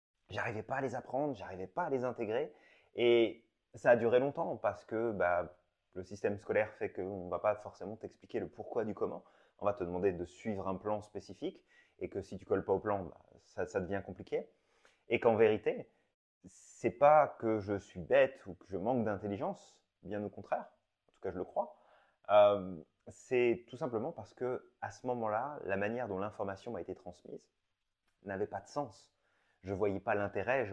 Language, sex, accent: French, male, French